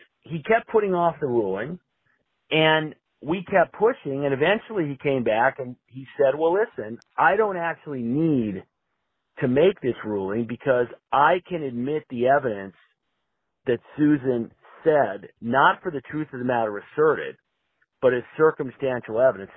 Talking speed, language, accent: 150 wpm, English, American